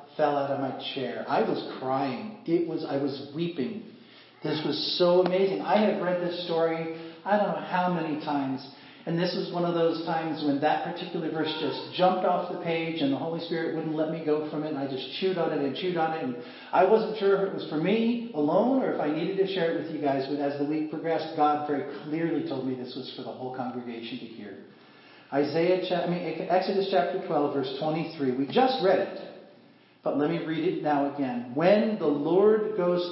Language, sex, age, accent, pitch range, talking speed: English, male, 40-59, American, 145-180 Hz, 225 wpm